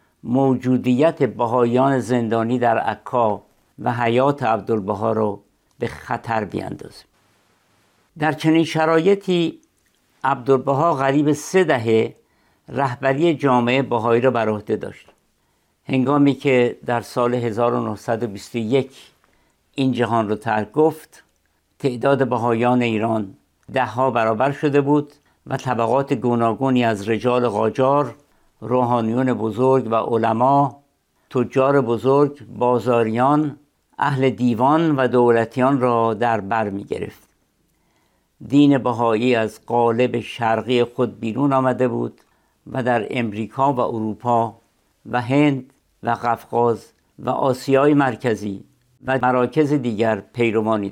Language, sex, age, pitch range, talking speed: Persian, male, 60-79, 115-135 Hz, 105 wpm